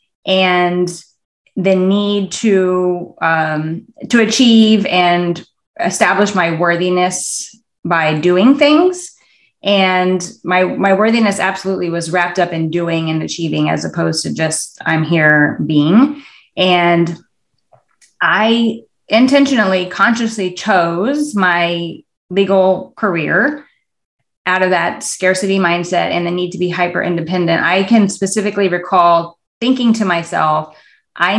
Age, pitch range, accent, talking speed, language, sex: 20-39, 175-215 Hz, American, 115 wpm, English, female